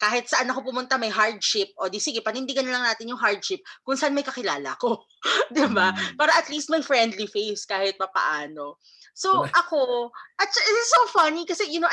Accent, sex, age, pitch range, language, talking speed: native, female, 20-39, 175-265 Hz, Filipino, 200 wpm